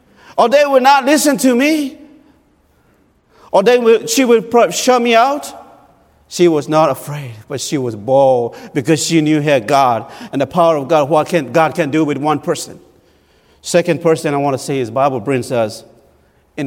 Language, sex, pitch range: English, male, 130-215 Hz